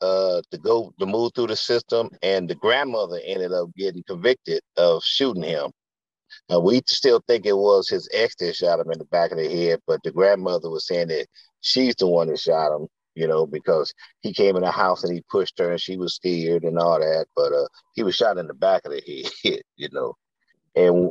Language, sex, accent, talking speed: English, male, American, 225 wpm